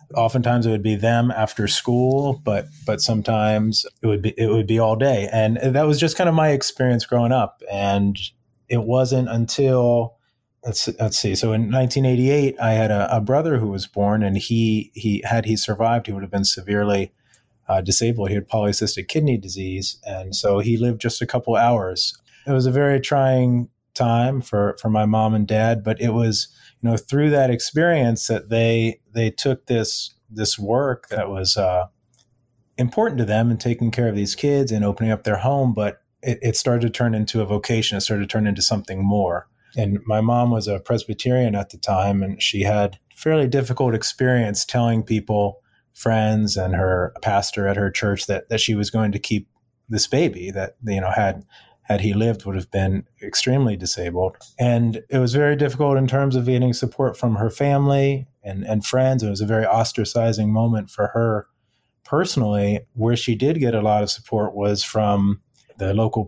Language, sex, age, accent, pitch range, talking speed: English, male, 30-49, American, 105-125 Hz, 195 wpm